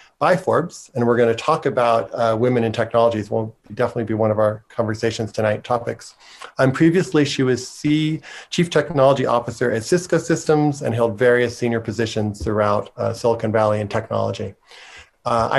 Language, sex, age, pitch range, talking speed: English, male, 40-59, 115-135 Hz, 170 wpm